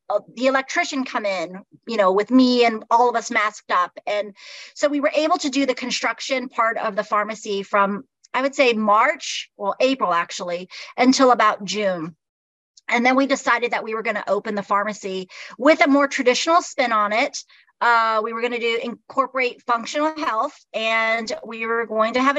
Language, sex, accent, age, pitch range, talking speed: English, female, American, 30-49, 225-290 Hz, 195 wpm